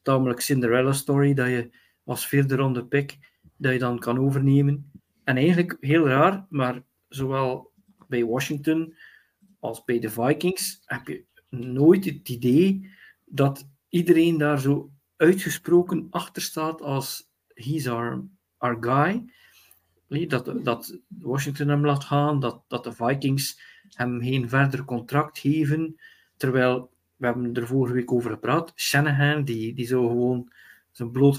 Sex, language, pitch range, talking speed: male, Dutch, 125-150 Hz, 140 wpm